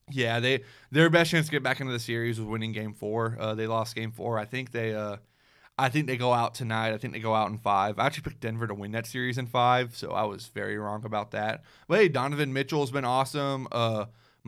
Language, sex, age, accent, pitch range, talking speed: English, male, 20-39, American, 110-130 Hz, 255 wpm